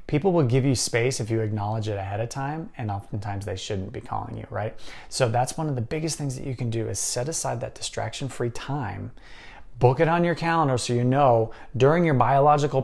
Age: 30-49